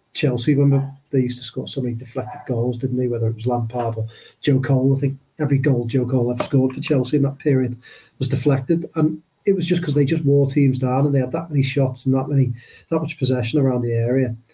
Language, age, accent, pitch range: English, 40-59, British, 120-140 Hz